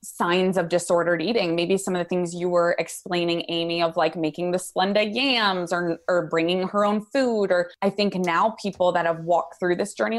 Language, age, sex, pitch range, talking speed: English, 20-39, female, 165-195 Hz, 210 wpm